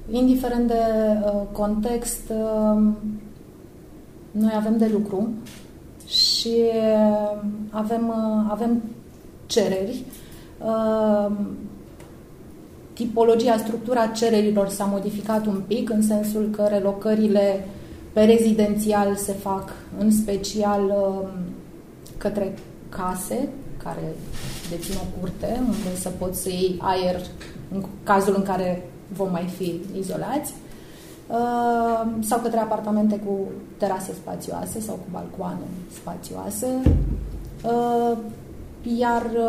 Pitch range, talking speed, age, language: 200-230 Hz, 95 wpm, 30-49, Romanian